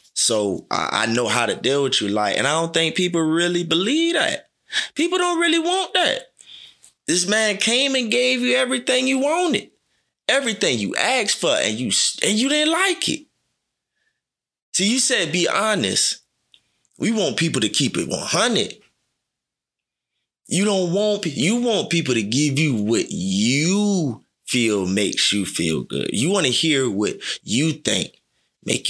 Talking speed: 165 wpm